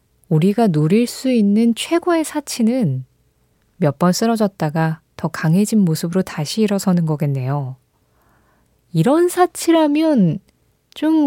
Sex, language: female, Korean